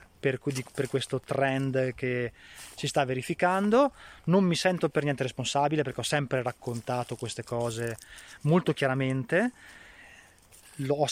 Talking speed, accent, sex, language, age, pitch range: 120 wpm, native, male, Italian, 20-39, 130-155 Hz